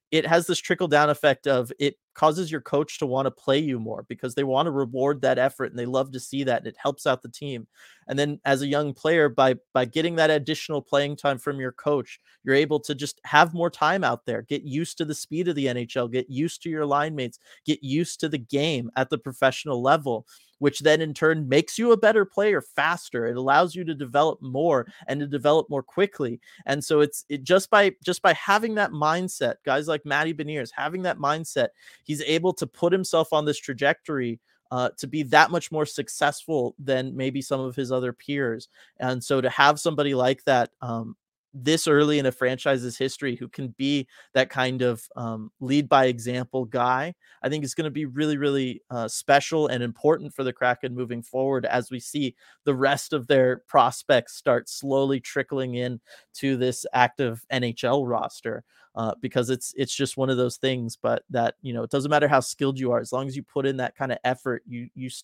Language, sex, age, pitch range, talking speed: English, male, 30-49, 130-150 Hz, 215 wpm